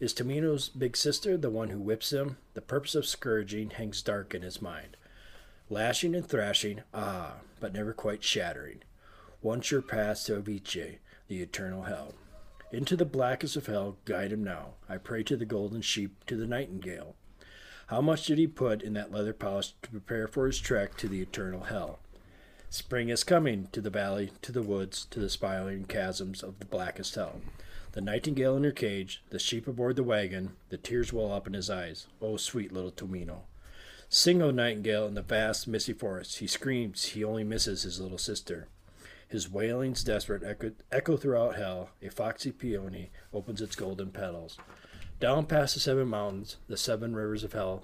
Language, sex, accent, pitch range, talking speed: English, male, American, 95-125 Hz, 185 wpm